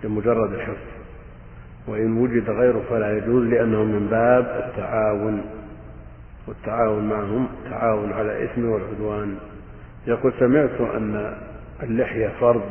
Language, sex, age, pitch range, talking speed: Arabic, male, 50-69, 105-115 Hz, 105 wpm